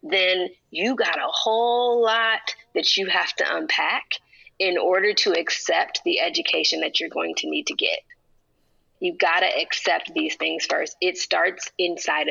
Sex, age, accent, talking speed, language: female, 30-49, American, 165 wpm, English